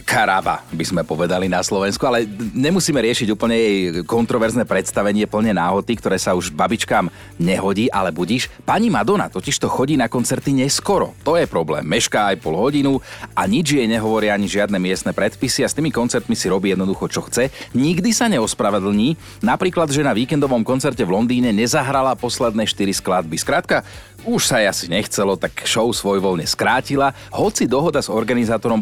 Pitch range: 95-135 Hz